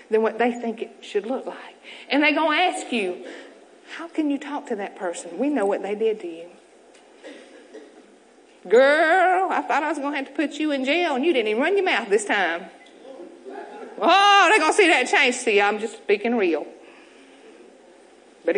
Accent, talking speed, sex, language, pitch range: American, 205 wpm, female, English, 230-300 Hz